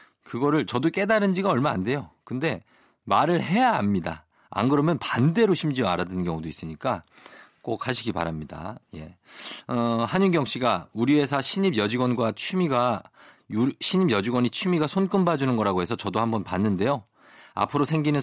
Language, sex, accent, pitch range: Korean, male, native, 105-155 Hz